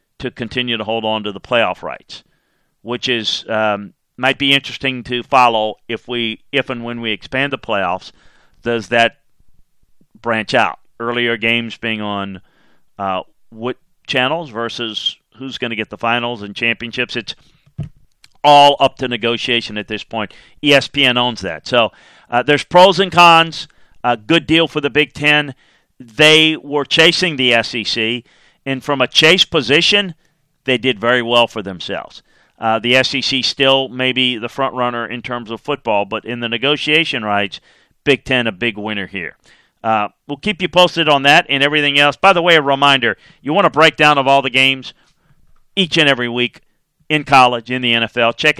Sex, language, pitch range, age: male, English, 115-145 Hz, 40-59